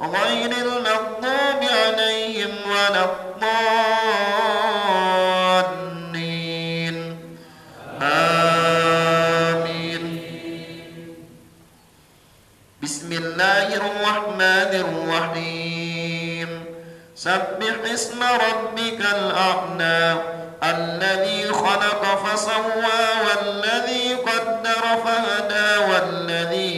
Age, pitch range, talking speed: 50-69, 165-220 Hz, 45 wpm